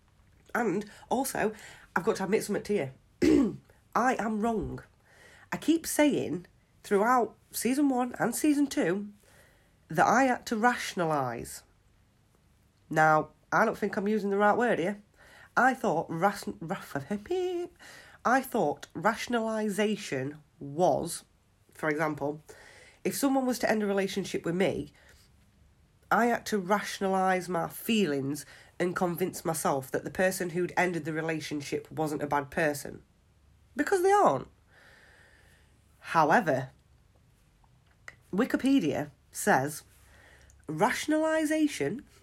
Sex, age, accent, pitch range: female, 40-59, British, 150-220 Hz